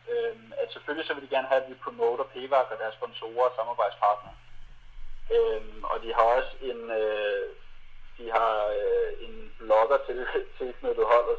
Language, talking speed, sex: Danish, 165 wpm, male